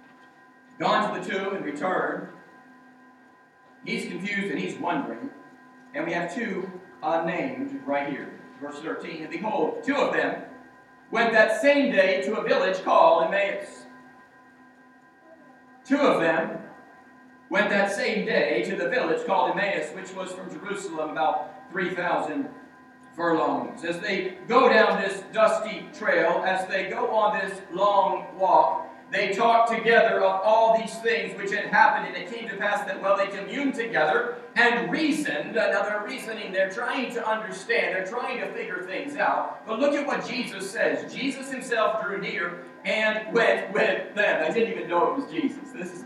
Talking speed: 165 wpm